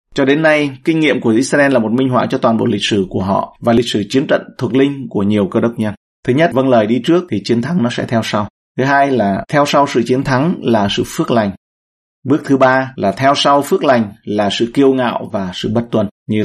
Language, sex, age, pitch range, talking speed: Vietnamese, male, 30-49, 115-140 Hz, 265 wpm